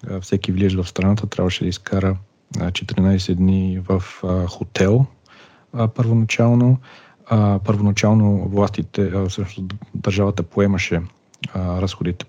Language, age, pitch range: Bulgarian, 40-59, 95-110 Hz